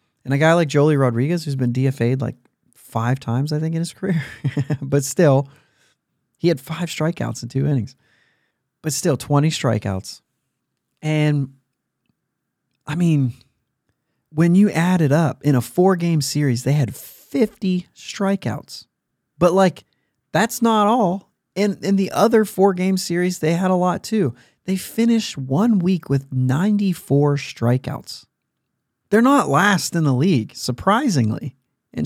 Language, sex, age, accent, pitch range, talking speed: English, male, 30-49, American, 120-170 Hz, 145 wpm